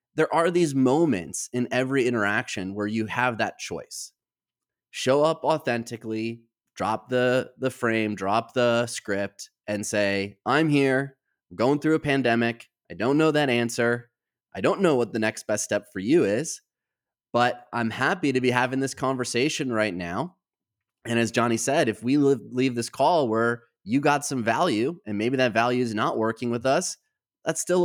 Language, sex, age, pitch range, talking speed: English, male, 30-49, 105-130 Hz, 175 wpm